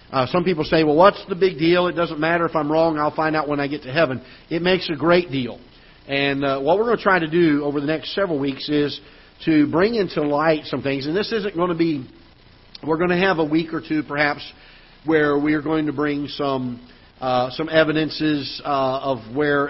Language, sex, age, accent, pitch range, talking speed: English, male, 50-69, American, 130-160 Hz, 235 wpm